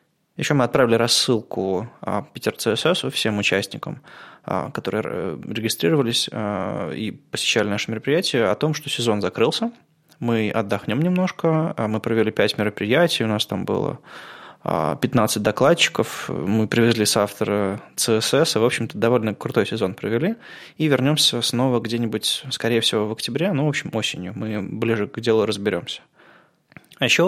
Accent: native